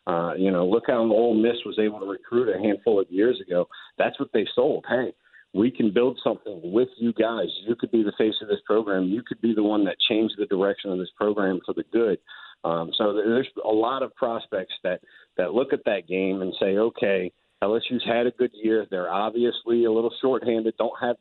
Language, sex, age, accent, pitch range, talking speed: English, male, 50-69, American, 105-130 Hz, 225 wpm